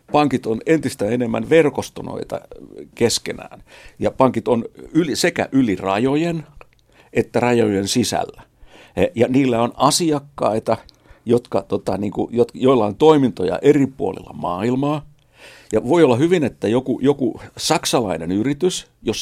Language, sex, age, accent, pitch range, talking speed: Finnish, male, 60-79, native, 115-150 Hz, 110 wpm